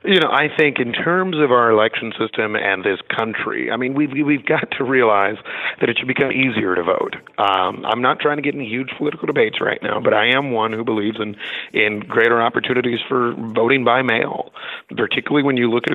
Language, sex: English, male